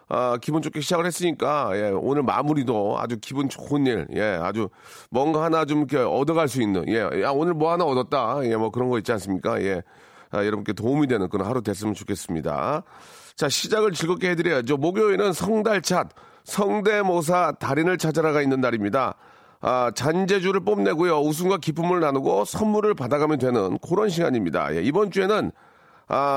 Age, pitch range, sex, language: 40-59, 145-195 Hz, male, Korean